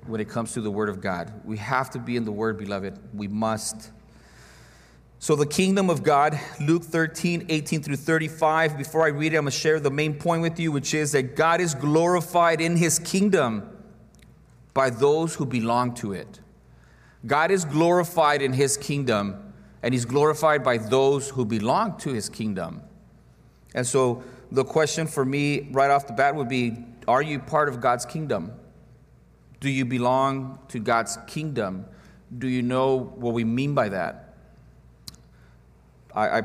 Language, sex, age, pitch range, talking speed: English, male, 30-49, 110-150 Hz, 175 wpm